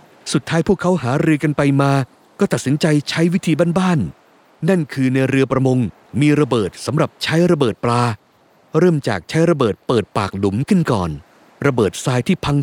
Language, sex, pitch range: Thai, male, 125-165 Hz